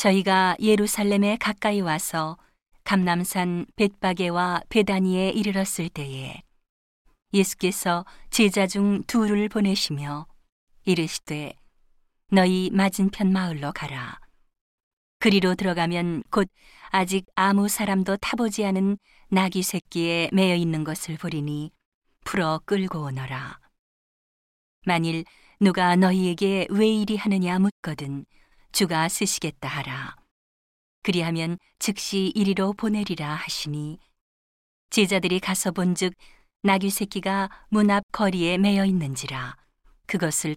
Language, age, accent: Korean, 40-59, native